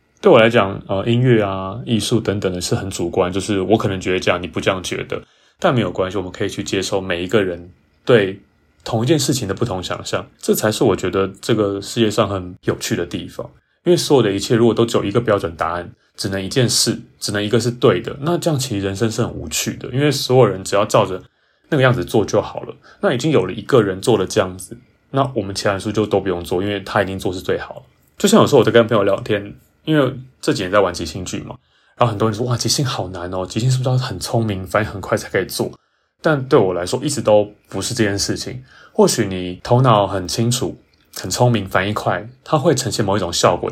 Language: Chinese